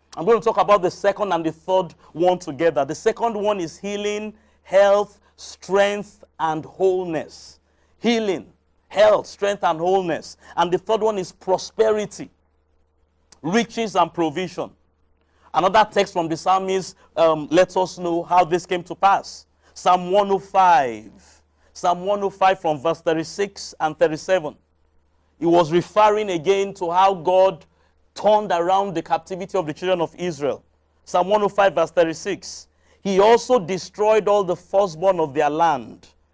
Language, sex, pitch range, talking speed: English, male, 145-190 Hz, 145 wpm